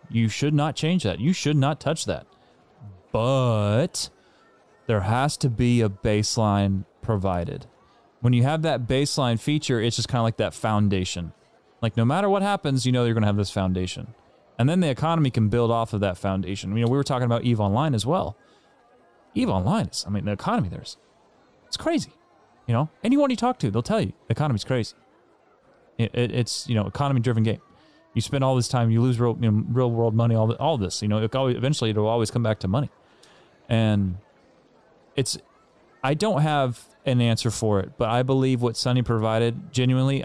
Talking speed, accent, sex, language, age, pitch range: 200 wpm, American, male, English, 30-49, 110-135 Hz